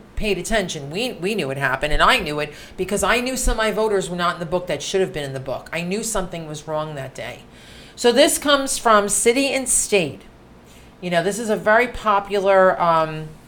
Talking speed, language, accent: 230 wpm, English, American